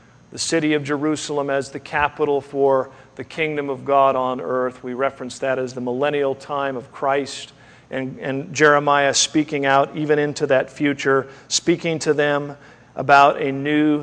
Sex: male